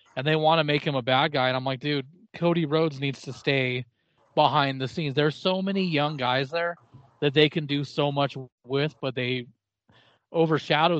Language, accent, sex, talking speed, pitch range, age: English, American, male, 200 wpm, 125-155 Hz, 30-49